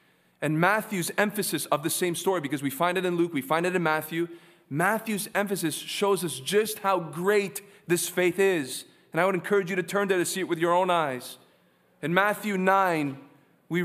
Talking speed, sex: 205 wpm, male